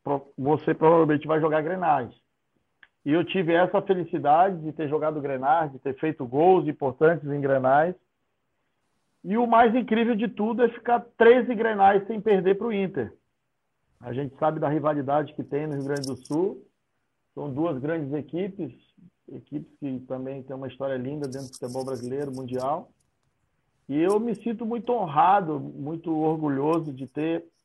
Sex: male